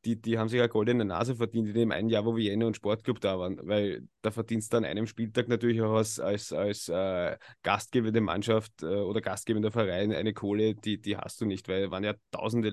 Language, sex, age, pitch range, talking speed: German, male, 20-39, 110-130 Hz, 245 wpm